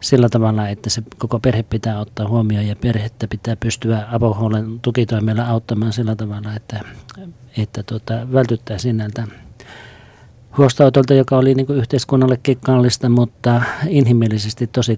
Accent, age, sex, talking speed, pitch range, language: native, 40-59, male, 130 wpm, 110-125 Hz, Finnish